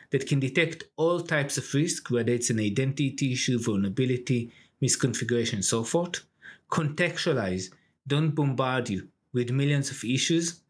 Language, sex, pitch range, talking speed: English, male, 120-155 Hz, 140 wpm